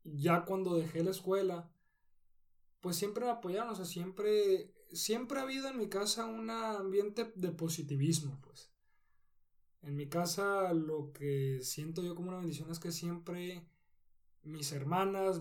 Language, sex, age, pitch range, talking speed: Spanish, male, 20-39, 140-185 Hz, 150 wpm